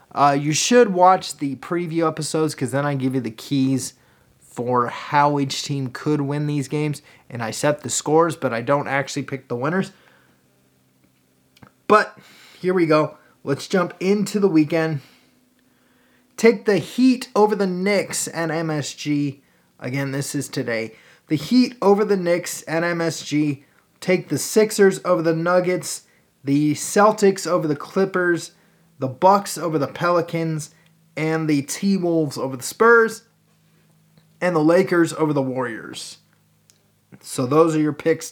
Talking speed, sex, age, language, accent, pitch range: 150 wpm, male, 20-39, English, American, 140-185 Hz